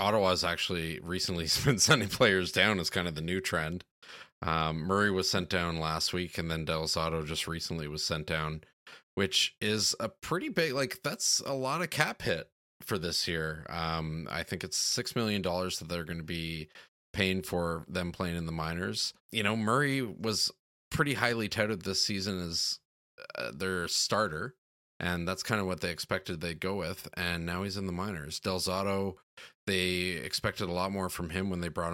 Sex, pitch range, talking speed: male, 85-100 Hz, 190 wpm